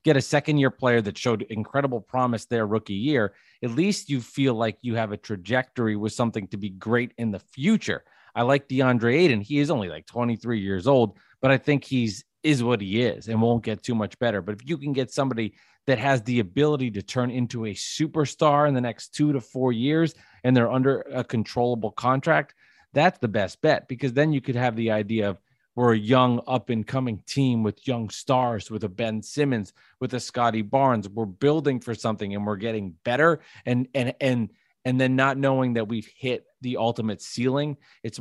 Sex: male